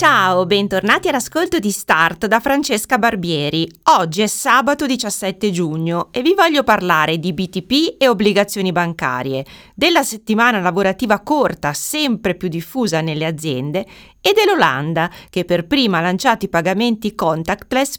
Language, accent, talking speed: Italian, native, 135 wpm